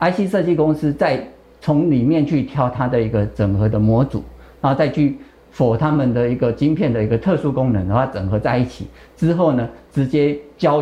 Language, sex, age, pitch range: Chinese, male, 50-69, 110-150 Hz